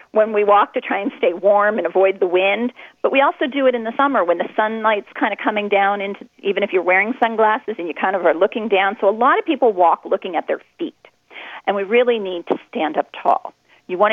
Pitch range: 190-250 Hz